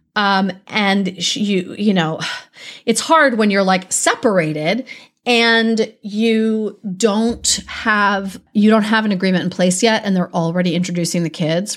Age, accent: 30-49, American